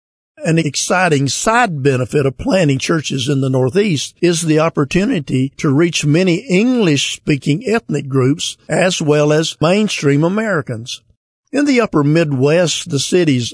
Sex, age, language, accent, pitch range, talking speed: male, 50-69, English, American, 135-170 Hz, 135 wpm